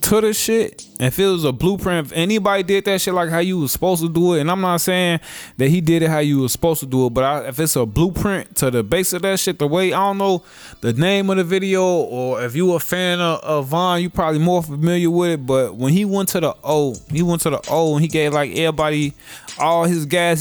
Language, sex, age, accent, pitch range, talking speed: English, male, 20-39, American, 150-185 Hz, 270 wpm